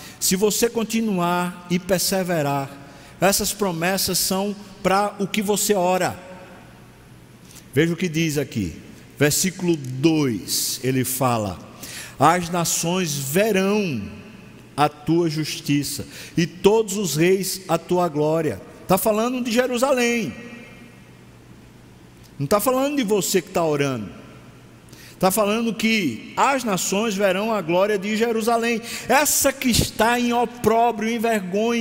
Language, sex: Portuguese, male